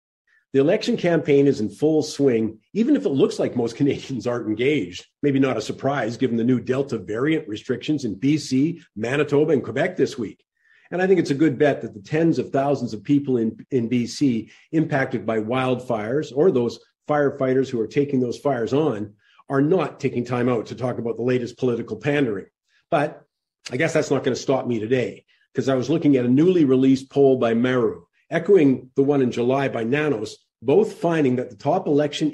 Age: 50-69